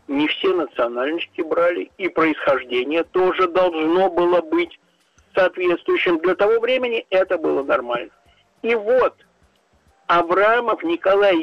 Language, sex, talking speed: Russian, male, 110 wpm